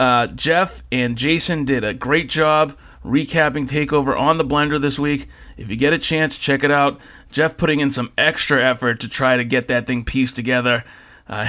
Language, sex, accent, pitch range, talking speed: English, male, American, 125-170 Hz, 200 wpm